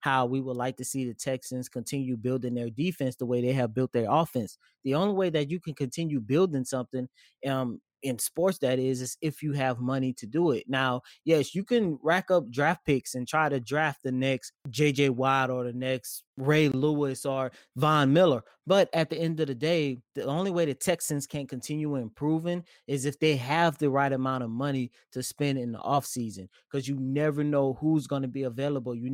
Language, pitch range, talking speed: English, 130-160 Hz, 215 wpm